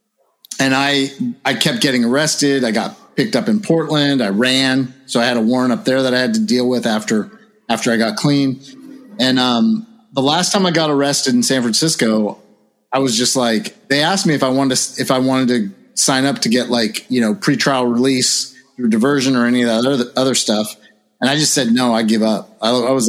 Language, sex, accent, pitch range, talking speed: English, male, American, 120-155 Hz, 225 wpm